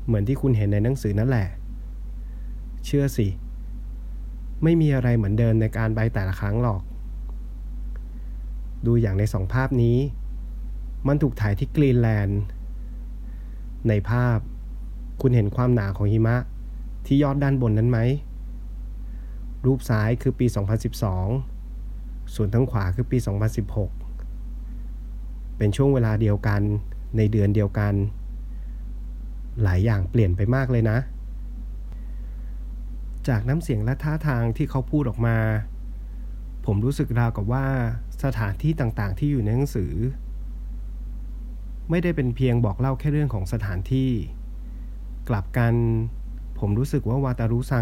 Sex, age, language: male, 20-39, Thai